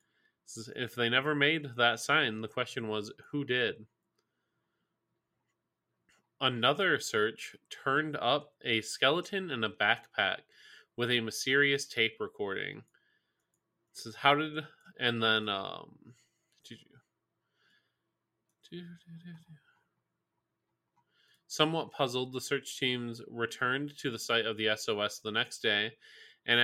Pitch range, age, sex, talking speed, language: 115-145 Hz, 20-39, male, 105 wpm, English